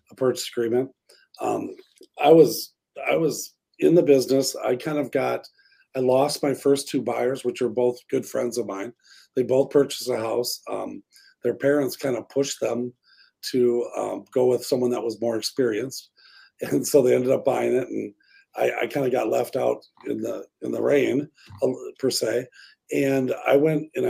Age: 40-59